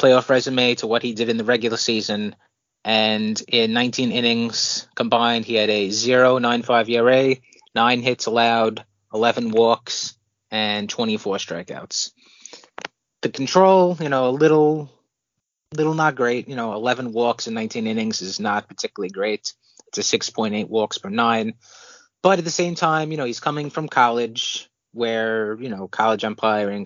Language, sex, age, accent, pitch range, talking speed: English, male, 30-49, American, 110-130 Hz, 160 wpm